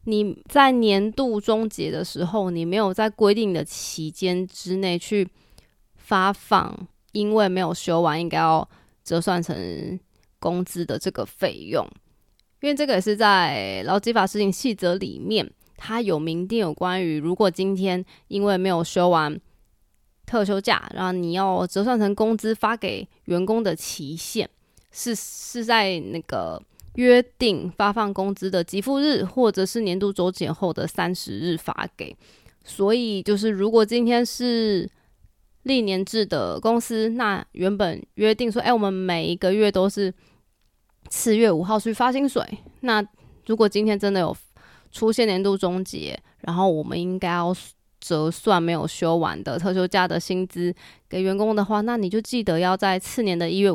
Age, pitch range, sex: 20-39, 180-220 Hz, female